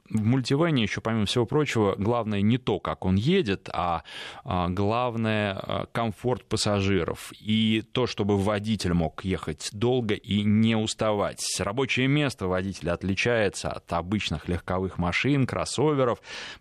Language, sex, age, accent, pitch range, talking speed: Russian, male, 20-39, native, 95-125 Hz, 125 wpm